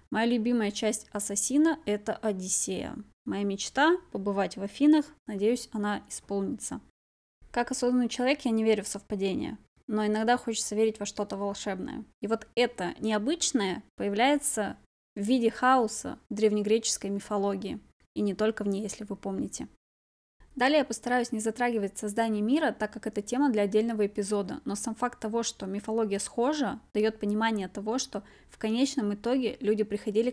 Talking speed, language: 160 wpm, Russian